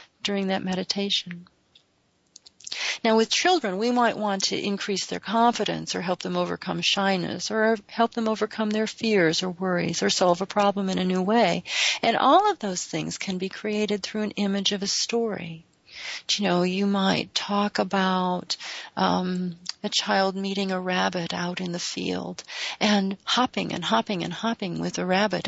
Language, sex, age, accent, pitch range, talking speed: English, female, 40-59, American, 180-215 Hz, 170 wpm